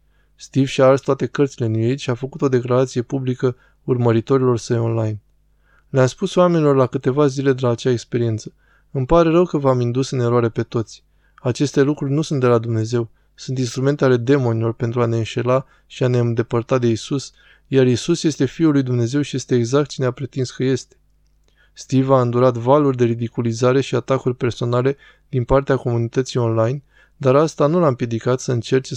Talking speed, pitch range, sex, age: 190 wpm, 120-135 Hz, male, 20-39